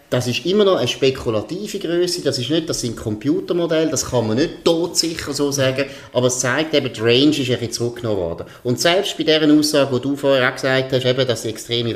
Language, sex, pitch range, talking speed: German, male, 120-150 Hz, 215 wpm